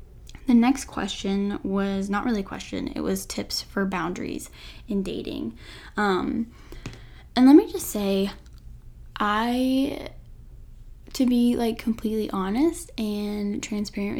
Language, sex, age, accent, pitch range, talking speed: English, female, 10-29, American, 195-235 Hz, 125 wpm